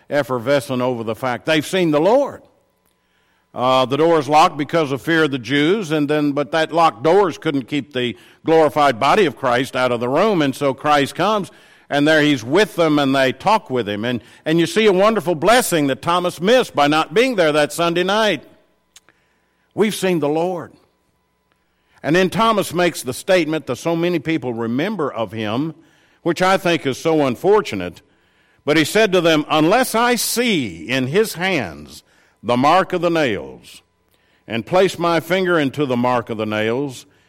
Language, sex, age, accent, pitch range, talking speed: English, male, 50-69, American, 125-170 Hz, 185 wpm